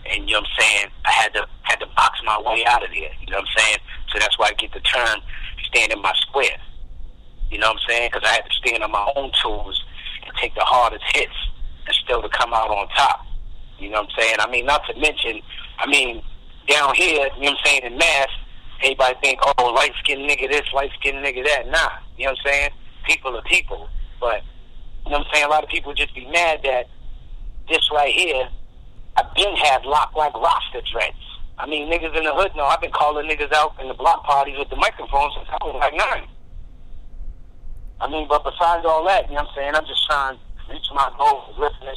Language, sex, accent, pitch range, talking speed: English, male, American, 125-150 Hz, 235 wpm